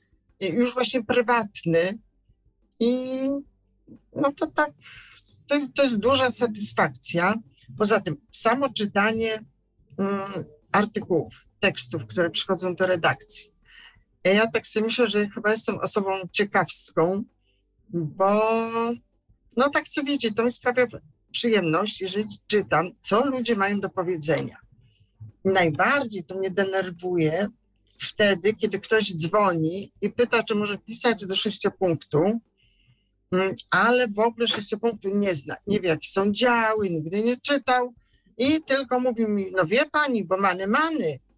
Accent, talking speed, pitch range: native, 125 wpm, 185-240 Hz